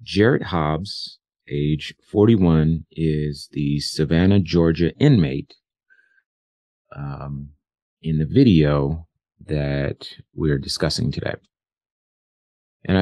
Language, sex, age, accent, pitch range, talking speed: English, male, 30-49, American, 70-85 Hz, 85 wpm